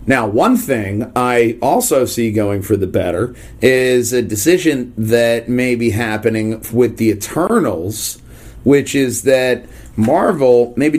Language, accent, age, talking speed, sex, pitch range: English, American, 30-49, 140 wpm, male, 115-140 Hz